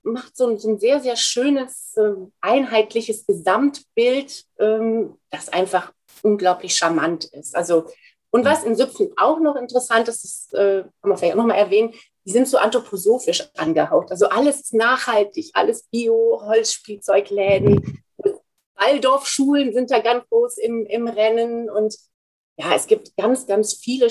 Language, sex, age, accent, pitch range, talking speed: German, female, 30-49, German, 205-260 Hz, 140 wpm